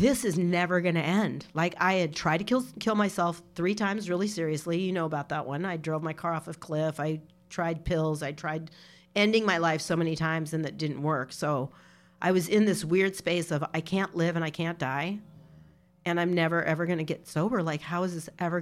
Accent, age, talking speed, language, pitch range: American, 40-59, 235 wpm, English, 155-195 Hz